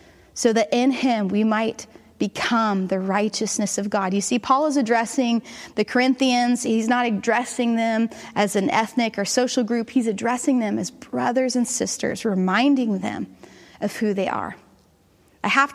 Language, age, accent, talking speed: English, 30-49, American, 165 wpm